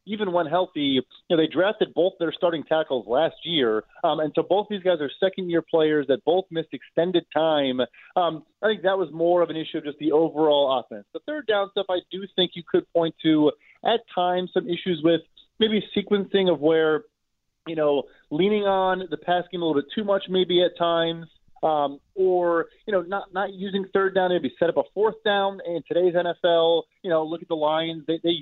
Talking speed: 220 wpm